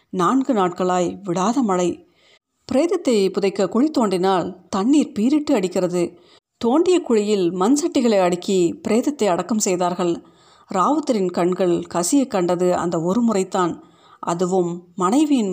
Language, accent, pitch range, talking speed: Tamil, native, 180-235 Hz, 110 wpm